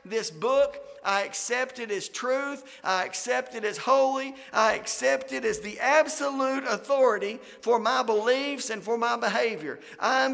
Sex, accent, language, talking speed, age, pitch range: male, American, English, 155 wpm, 50-69, 205-270 Hz